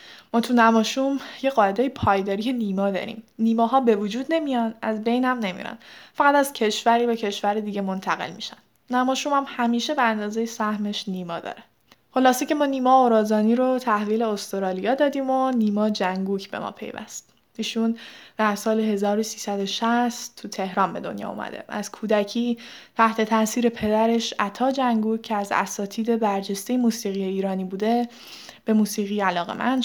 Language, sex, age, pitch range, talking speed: Persian, female, 10-29, 200-240 Hz, 145 wpm